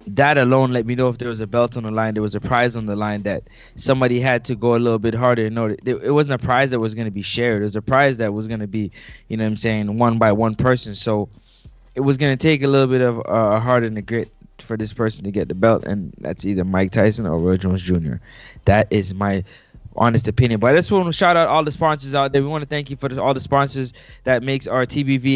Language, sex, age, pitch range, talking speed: English, male, 20-39, 110-135 Hz, 285 wpm